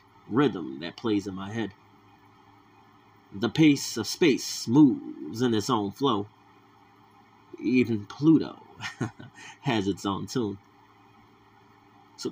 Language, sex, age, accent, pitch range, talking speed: English, male, 30-49, American, 100-115 Hz, 105 wpm